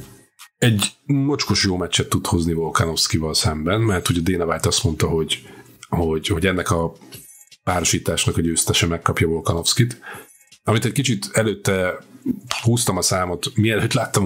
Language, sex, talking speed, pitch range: Hungarian, male, 135 wpm, 85-110 Hz